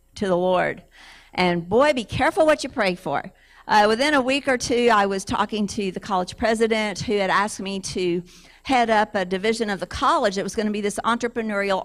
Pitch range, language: 180-220 Hz, English